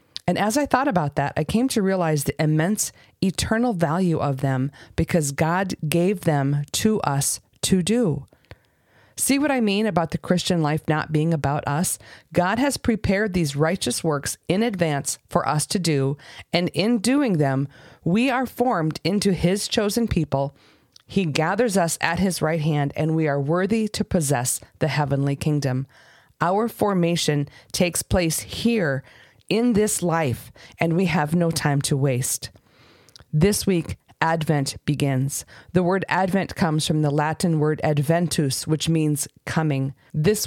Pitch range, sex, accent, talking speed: 140-185 Hz, female, American, 160 wpm